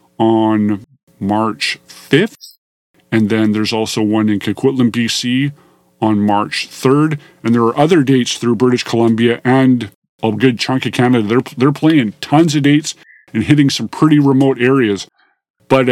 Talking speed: 155 wpm